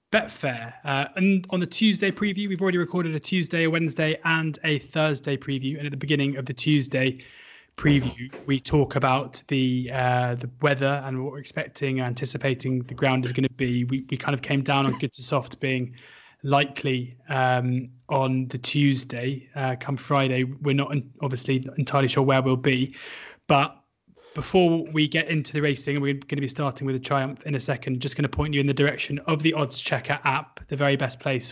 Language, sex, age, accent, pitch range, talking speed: English, male, 20-39, British, 130-150 Hz, 205 wpm